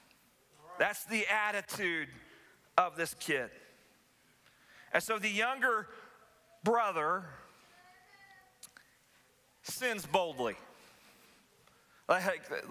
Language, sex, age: English, male, 40-59